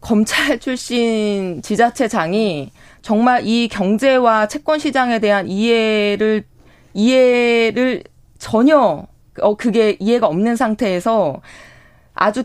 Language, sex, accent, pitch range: Korean, female, native, 190-245 Hz